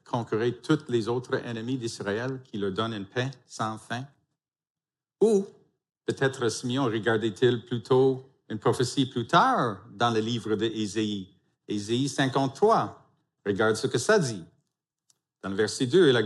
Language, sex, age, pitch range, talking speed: French, male, 50-69, 115-145 Hz, 145 wpm